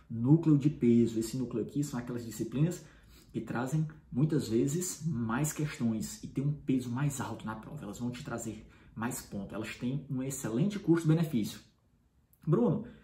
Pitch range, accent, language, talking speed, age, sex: 120-155 Hz, Brazilian, Portuguese, 160 wpm, 20-39, male